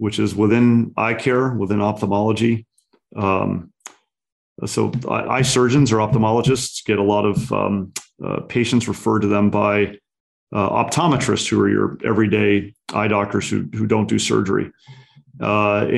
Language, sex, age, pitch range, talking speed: English, male, 40-59, 105-125 Hz, 145 wpm